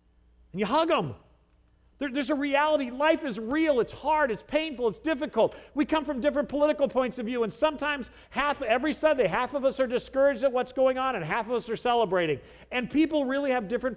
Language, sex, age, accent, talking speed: English, male, 50-69, American, 215 wpm